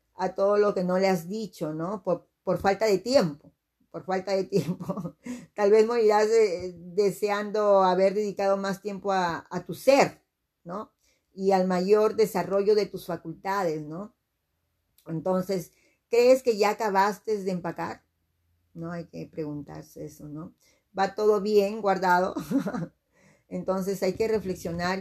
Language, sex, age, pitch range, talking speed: Spanish, female, 40-59, 165-200 Hz, 145 wpm